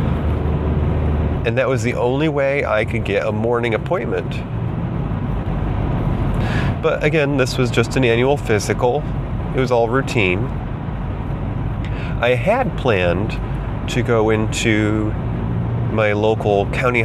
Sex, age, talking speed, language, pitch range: male, 30-49, 115 wpm, English, 105-130 Hz